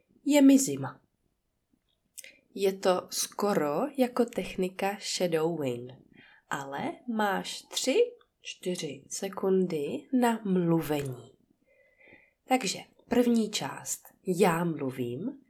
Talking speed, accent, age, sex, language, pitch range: 80 wpm, native, 20-39, female, Czech, 165-260 Hz